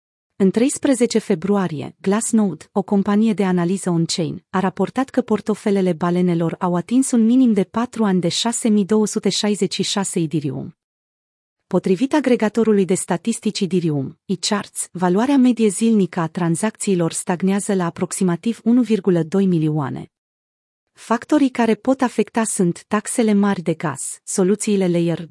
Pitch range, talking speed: 175-220 Hz, 120 wpm